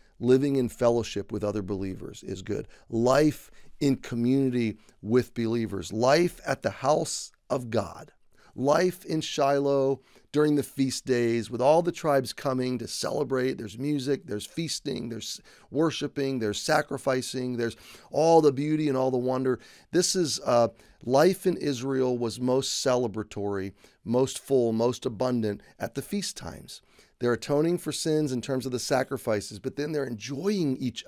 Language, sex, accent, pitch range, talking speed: English, male, American, 115-145 Hz, 155 wpm